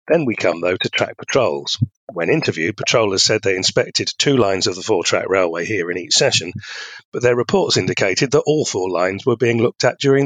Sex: male